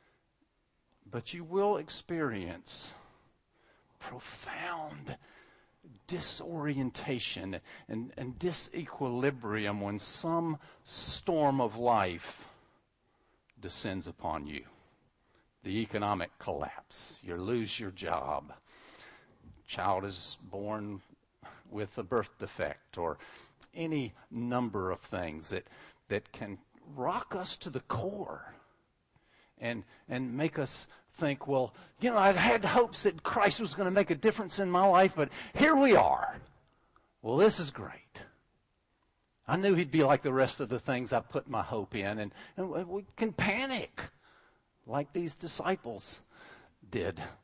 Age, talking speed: 50-69, 125 wpm